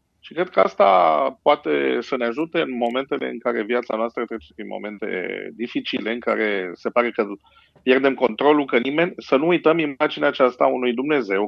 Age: 50-69